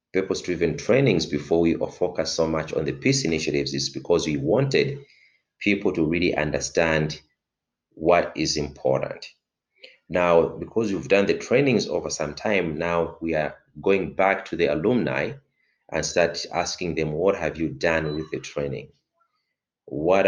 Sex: male